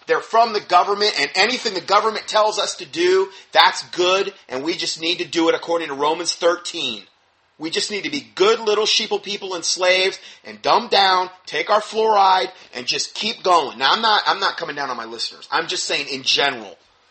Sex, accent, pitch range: male, American, 160-225 Hz